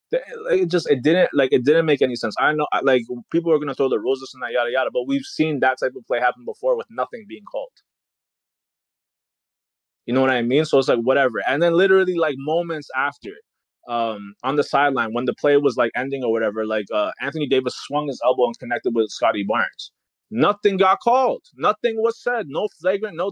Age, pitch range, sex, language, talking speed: 20-39, 130-185 Hz, male, English, 220 wpm